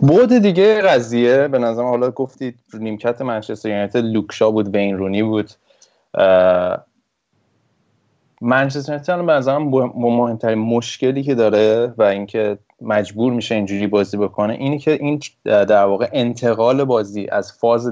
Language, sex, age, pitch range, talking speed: Persian, male, 20-39, 105-120 Hz, 130 wpm